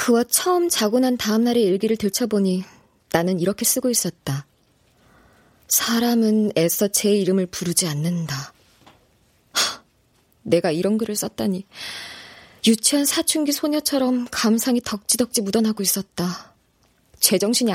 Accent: native